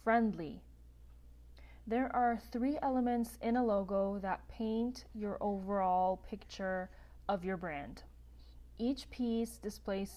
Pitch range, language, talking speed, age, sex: 190-235 Hz, English, 110 wpm, 20-39, female